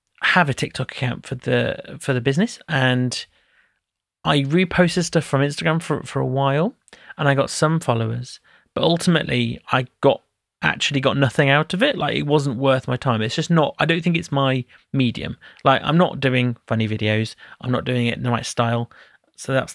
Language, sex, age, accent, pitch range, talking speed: English, male, 30-49, British, 120-165 Hz, 200 wpm